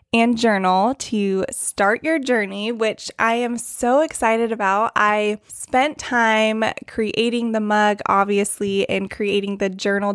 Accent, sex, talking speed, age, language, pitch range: American, female, 135 wpm, 20-39, English, 200-240 Hz